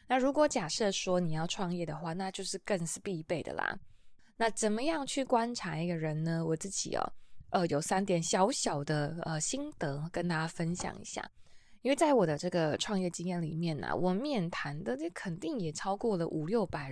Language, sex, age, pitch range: Chinese, female, 20-39, 165-210 Hz